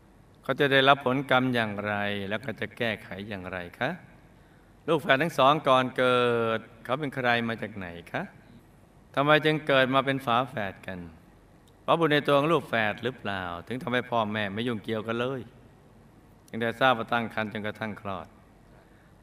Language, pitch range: Thai, 105-135 Hz